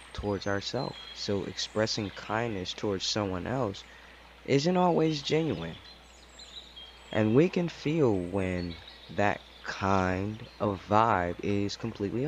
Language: English